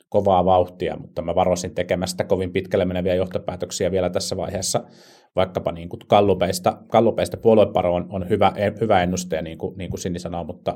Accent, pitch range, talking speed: native, 90-105 Hz, 160 wpm